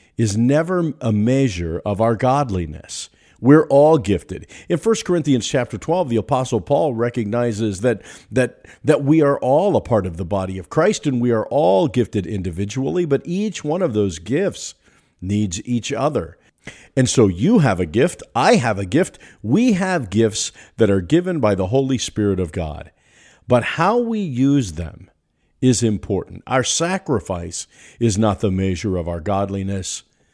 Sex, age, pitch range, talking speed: male, 50-69, 95-145 Hz, 165 wpm